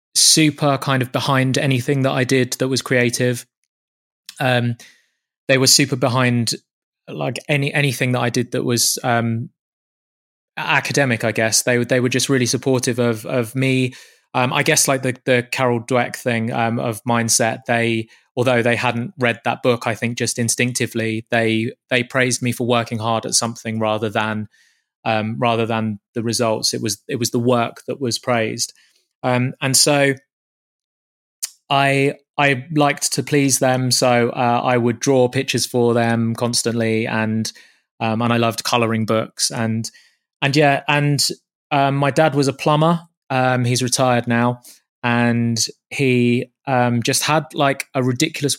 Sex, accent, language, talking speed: male, British, English, 165 wpm